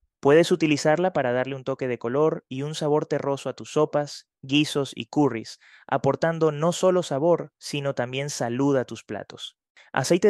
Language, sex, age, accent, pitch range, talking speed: Spanish, male, 20-39, Argentinian, 125-155 Hz, 170 wpm